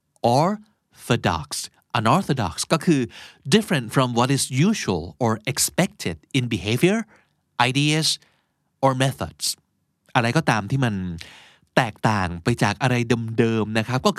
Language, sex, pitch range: Thai, male, 110-155 Hz